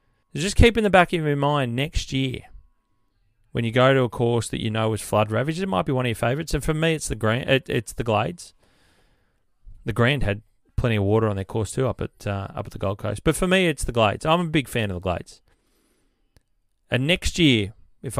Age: 30-49